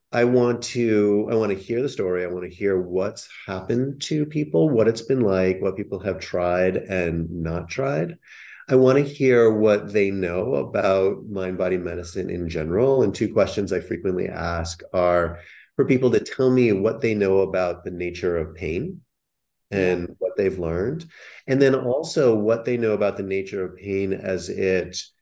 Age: 30-49